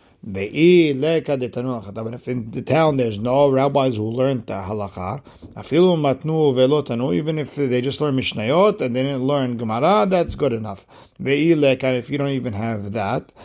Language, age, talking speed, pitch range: English, 50-69, 140 wpm, 120-145 Hz